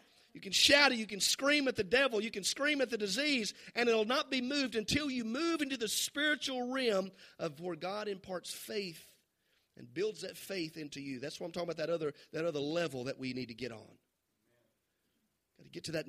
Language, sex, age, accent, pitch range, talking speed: English, male, 40-59, American, 175-270 Hz, 225 wpm